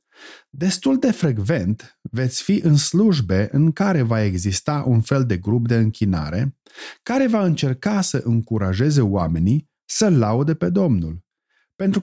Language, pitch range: Romanian, 105-145 Hz